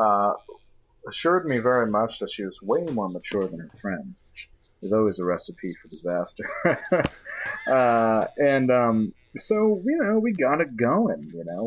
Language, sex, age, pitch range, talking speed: English, male, 30-49, 100-140 Hz, 170 wpm